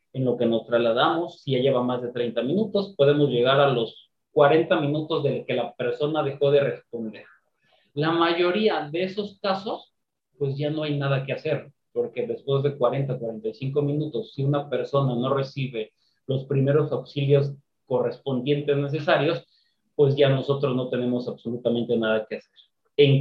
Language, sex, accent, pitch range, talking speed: Spanish, male, Mexican, 130-155 Hz, 165 wpm